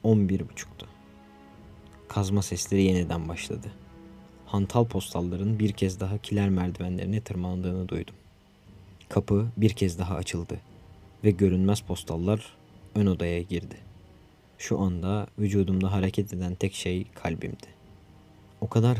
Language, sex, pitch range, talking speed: Turkish, male, 90-100 Hz, 115 wpm